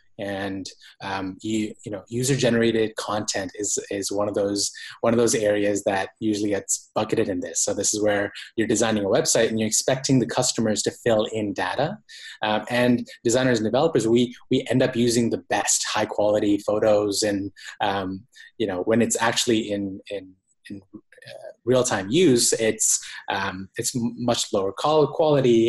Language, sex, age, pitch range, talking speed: English, male, 20-39, 105-125 Hz, 170 wpm